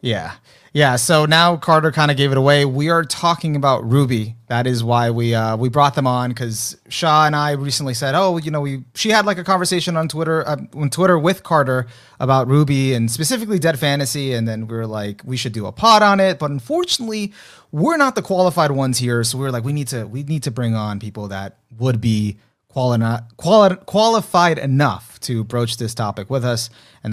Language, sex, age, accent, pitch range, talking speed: English, male, 30-49, American, 125-170 Hz, 220 wpm